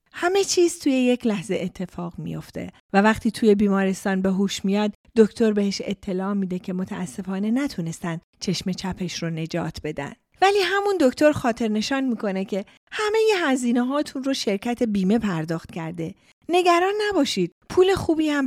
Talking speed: 150 wpm